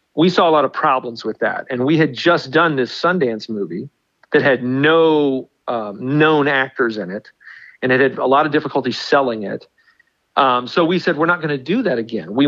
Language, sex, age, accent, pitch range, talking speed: English, male, 40-59, American, 130-160 Hz, 215 wpm